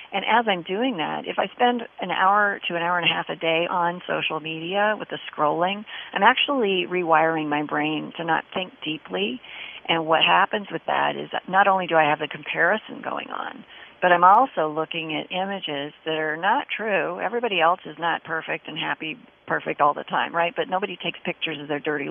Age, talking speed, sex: 40-59, 210 wpm, female